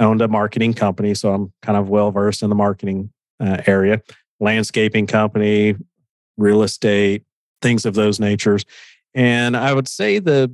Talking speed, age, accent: 165 wpm, 40-59, American